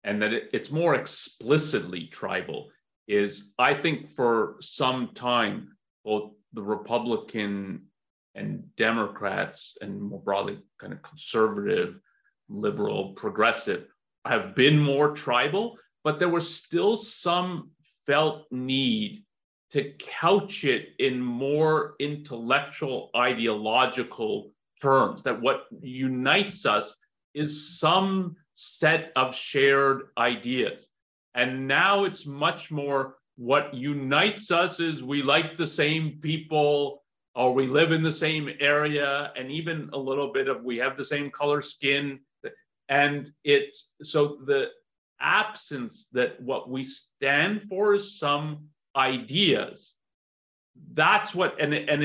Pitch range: 135-170 Hz